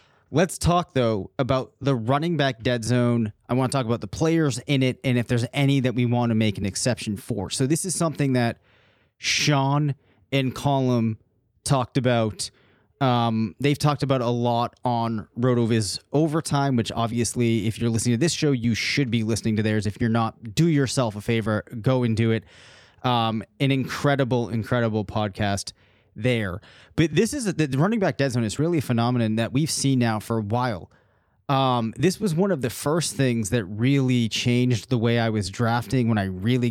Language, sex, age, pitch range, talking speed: English, male, 30-49, 110-135 Hz, 195 wpm